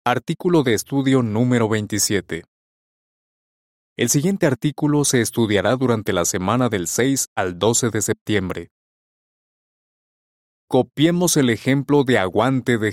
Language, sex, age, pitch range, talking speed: Spanish, male, 30-49, 100-135 Hz, 115 wpm